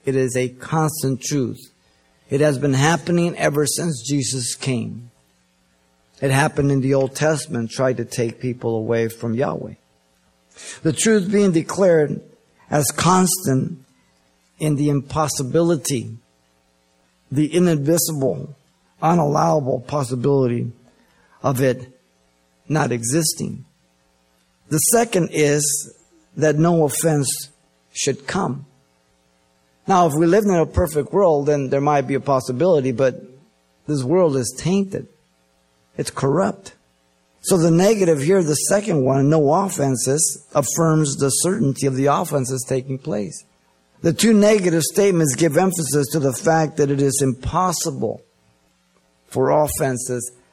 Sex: male